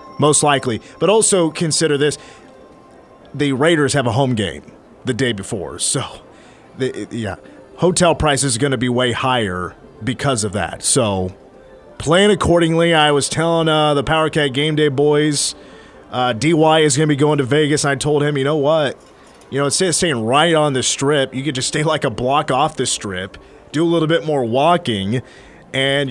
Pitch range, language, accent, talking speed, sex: 110-155 Hz, English, American, 185 wpm, male